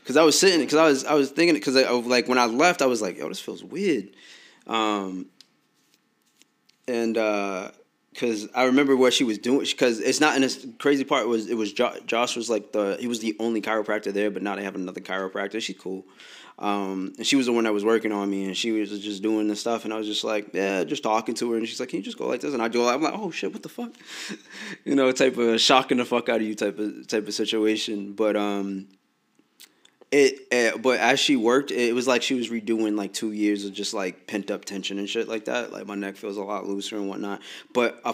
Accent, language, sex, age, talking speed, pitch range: American, English, male, 20-39, 265 wpm, 100-125 Hz